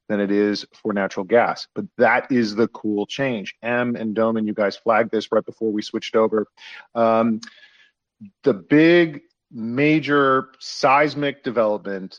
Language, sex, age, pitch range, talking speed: English, male, 40-59, 110-135 Hz, 150 wpm